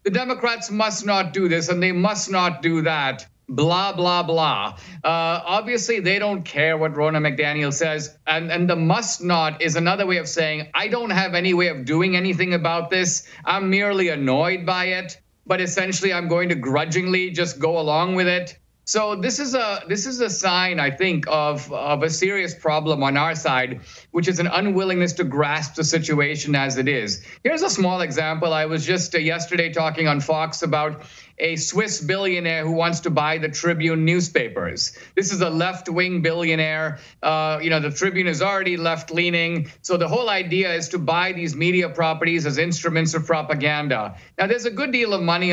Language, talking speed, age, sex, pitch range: English, 190 wpm, 50-69, male, 155-185 Hz